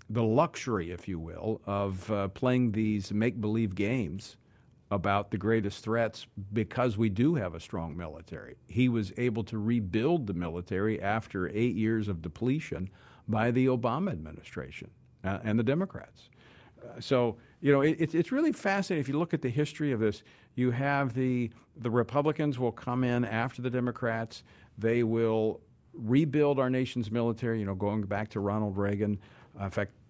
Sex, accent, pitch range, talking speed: male, American, 105-130 Hz, 165 wpm